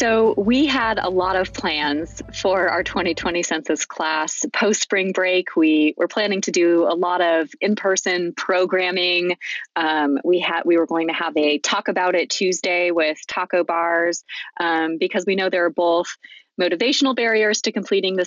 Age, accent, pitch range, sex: 20-39, American, 155-185 Hz, female